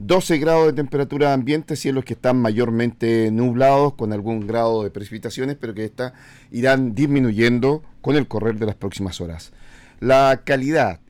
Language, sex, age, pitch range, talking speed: Spanish, male, 40-59, 100-125 Hz, 150 wpm